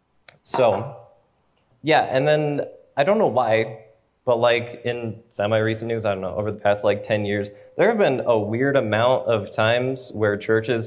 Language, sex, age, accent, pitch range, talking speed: English, male, 20-39, American, 105-125 Hz, 175 wpm